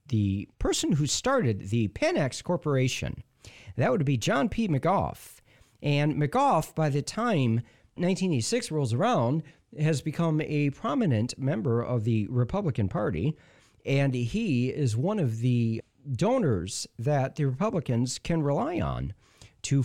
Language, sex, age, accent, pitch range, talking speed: English, male, 40-59, American, 115-160 Hz, 135 wpm